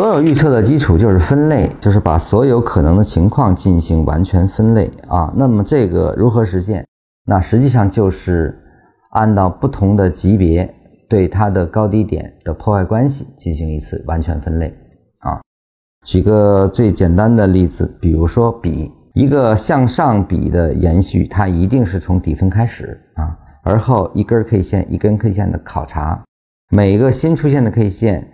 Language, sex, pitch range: Chinese, male, 90-115 Hz